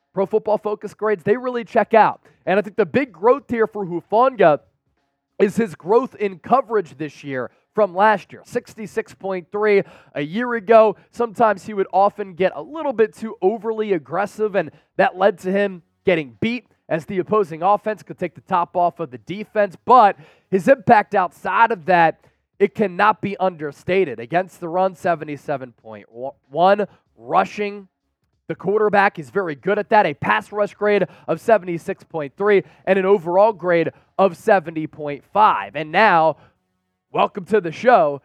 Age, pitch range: 20-39, 170-215 Hz